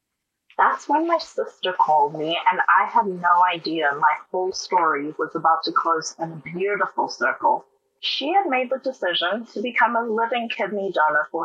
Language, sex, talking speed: English, female, 180 wpm